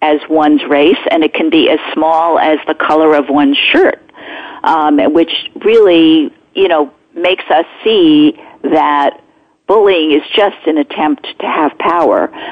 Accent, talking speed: American, 155 wpm